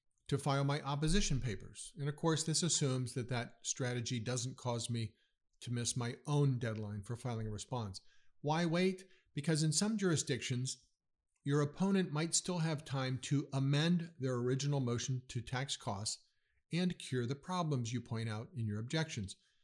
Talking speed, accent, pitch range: 170 wpm, American, 120-155 Hz